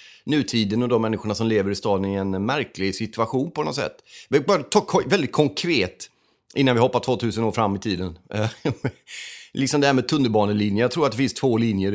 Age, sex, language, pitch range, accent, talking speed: 30-49, male, Swedish, 100-125 Hz, native, 200 wpm